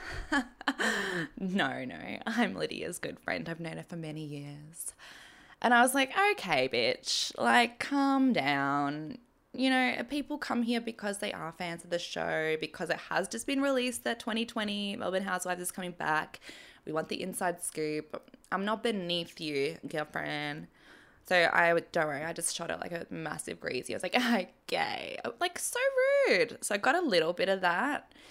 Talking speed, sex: 175 wpm, female